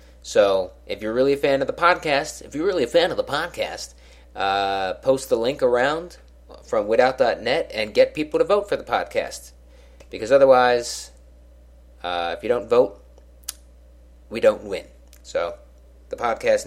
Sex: male